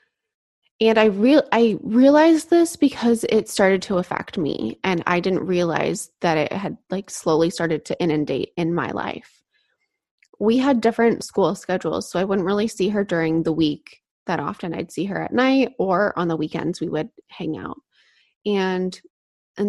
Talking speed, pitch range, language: 175 wpm, 170-220 Hz, English